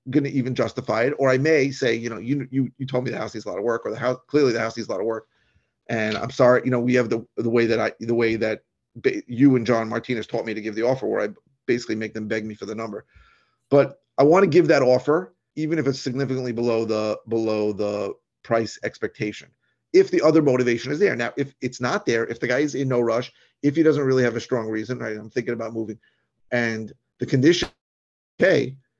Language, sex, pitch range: English, male, 115-135 Hz